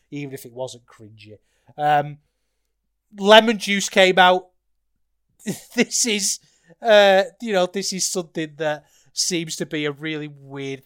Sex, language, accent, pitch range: male, English, British, 150-205 Hz